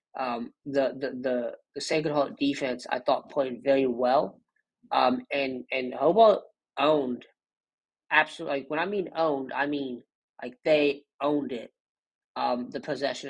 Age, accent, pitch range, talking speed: 30-49, American, 130-155 Hz, 150 wpm